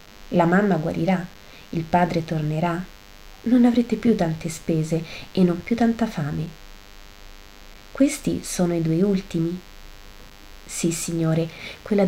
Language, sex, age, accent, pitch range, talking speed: Italian, female, 30-49, native, 155-205 Hz, 120 wpm